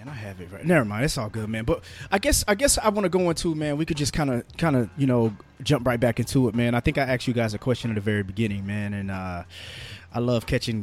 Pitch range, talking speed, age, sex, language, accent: 105-130 Hz, 305 wpm, 20-39, male, English, American